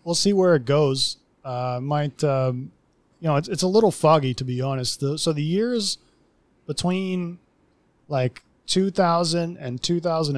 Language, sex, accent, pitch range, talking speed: English, male, American, 125-165 Hz, 160 wpm